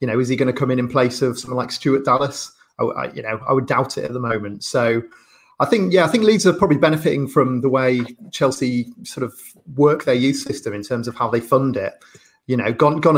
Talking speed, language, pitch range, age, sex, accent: 260 wpm, English, 120-135 Hz, 30-49, male, British